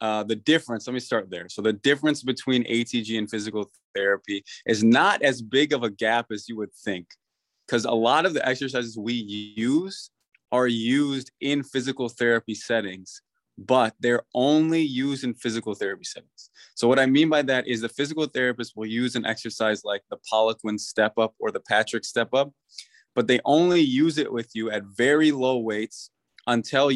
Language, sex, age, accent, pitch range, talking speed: English, male, 20-39, American, 110-130 Hz, 185 wpm